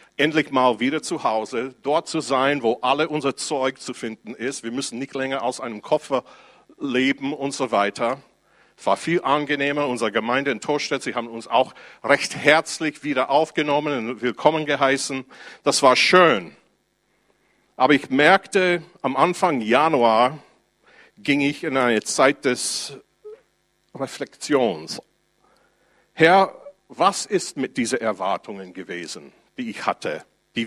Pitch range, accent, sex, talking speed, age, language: 130-170 Hz, German, male, 140 wpm, 50-69, German